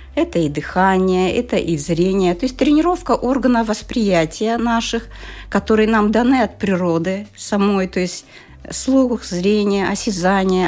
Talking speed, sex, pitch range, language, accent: 130 wpm, female, 170-220 Hz, Russian, native